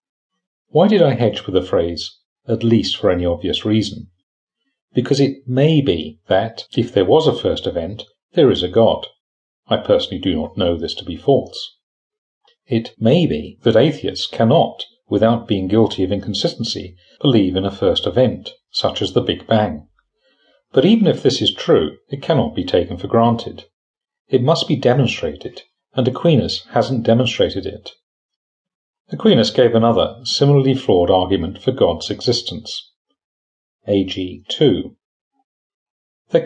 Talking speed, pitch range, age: 150 wpm, 95-140 Hz, 40-59